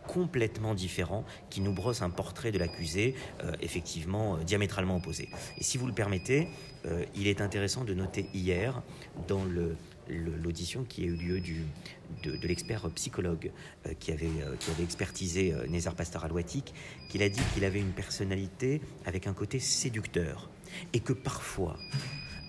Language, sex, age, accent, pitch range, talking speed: French, male, 40-59, French, 90-110 Hz, 175 wpm